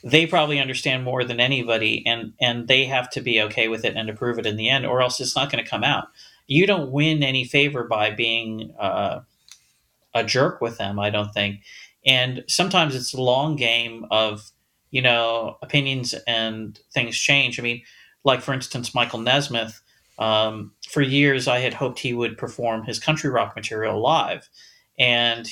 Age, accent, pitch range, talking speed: 40-59, American, 115-145 Hz, 185 wpm